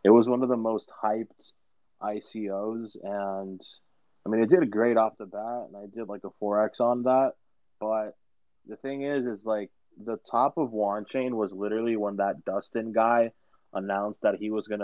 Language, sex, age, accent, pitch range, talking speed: English, male, 20-39, American, 105-125 Hz, 185 wpm